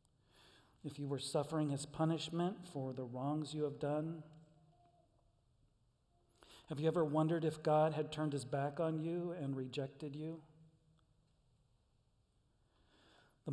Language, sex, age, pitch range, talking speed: English, male, 40-59, 140-165 Hz, 125 wpm